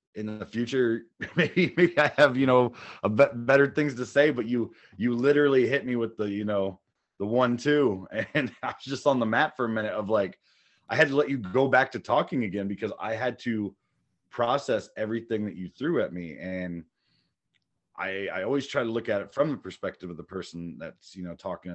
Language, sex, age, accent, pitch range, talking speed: English, male, 30-49, American, 95-130 Hz, 220 wpm